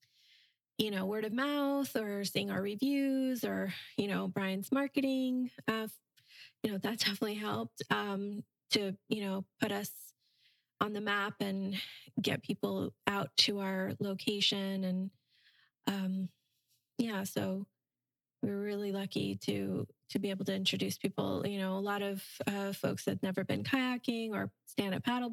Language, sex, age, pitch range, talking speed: English, female, 20-39, 185-215 Hz, 155 wpm